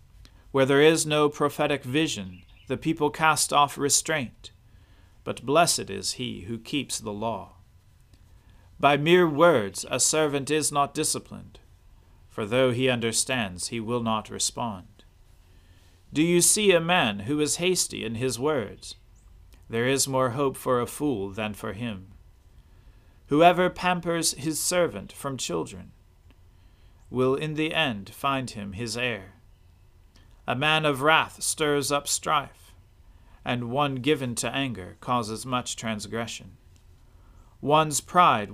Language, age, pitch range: English, 40-59, 95-145 Hz